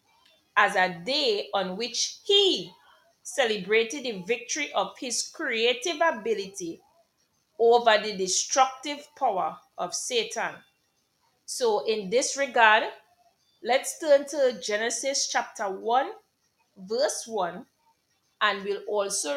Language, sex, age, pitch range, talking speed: English, female, 30-49, 205-280 Hz, 105 wpm